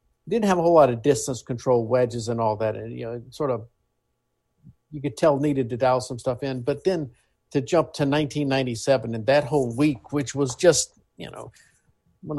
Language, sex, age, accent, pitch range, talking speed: English, male, 50-69, American, 125-155 Hz, 205 wpm